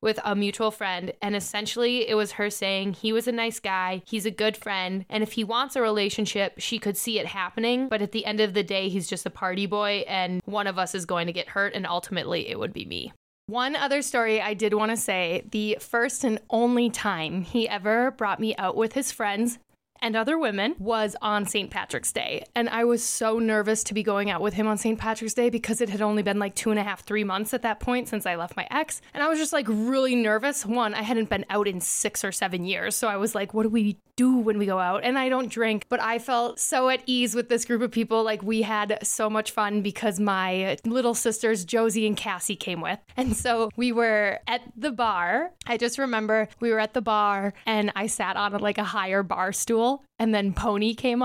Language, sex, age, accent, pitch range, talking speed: English, female, 10-29, American, 205-240 Hz, 245 wpm